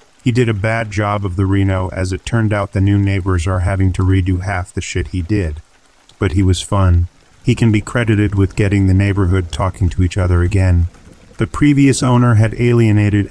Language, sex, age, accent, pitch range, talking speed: English, male, 40-59, American, 90-105 Hz, 210 wpm